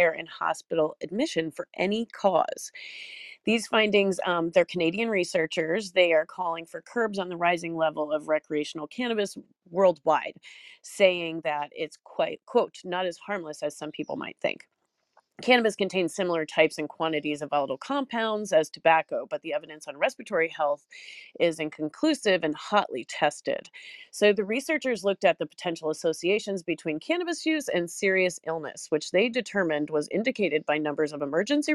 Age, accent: 30-49, American